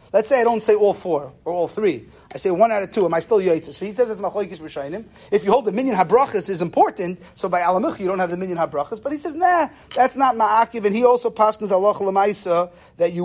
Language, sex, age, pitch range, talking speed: English, male, 30-49, 180-235 Hz, 265 wpm